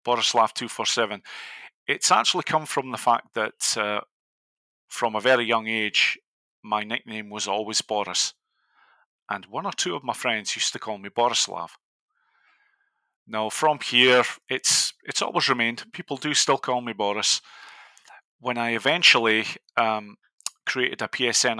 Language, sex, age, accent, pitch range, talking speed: English, male, 40-59, British, 100-115 Hz, 145 wpm